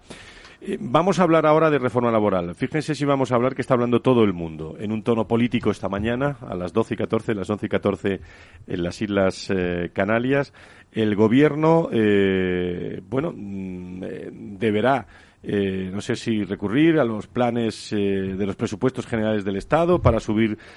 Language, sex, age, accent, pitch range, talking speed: Spanish, male, 40-59, Spanish, 100-125 Hz, 175 wpm